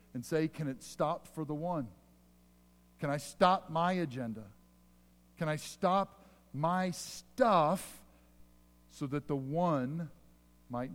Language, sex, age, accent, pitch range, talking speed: English, male, 50-69, American, 120-195 Hz, 125 wpm